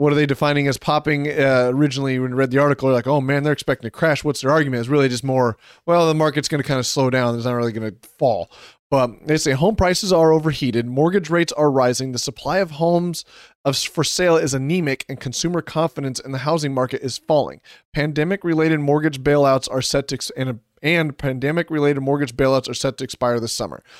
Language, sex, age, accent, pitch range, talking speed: English, male, 30-49, American, 130-155 Hz, 230 wpm